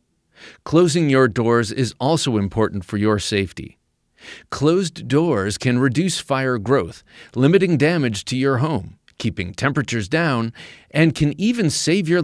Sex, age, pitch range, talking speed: male, 40-59, 110-155 Hz, 135 wpm